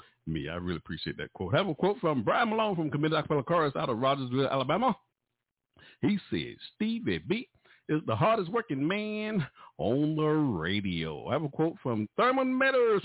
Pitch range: 140-225 Hz